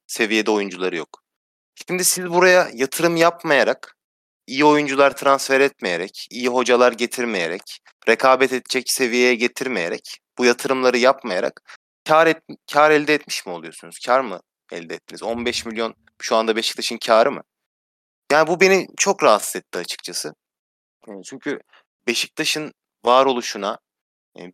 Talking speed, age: 125 wpm, 30-49